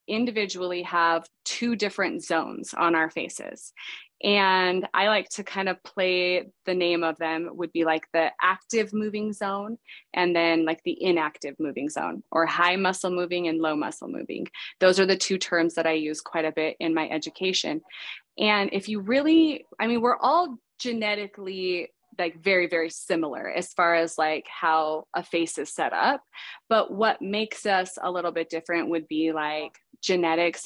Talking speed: 175 wpm